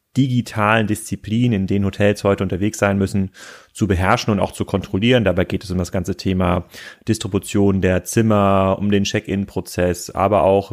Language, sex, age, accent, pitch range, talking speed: German, male, 30-49, German, 95-115 Hz, 170 wpm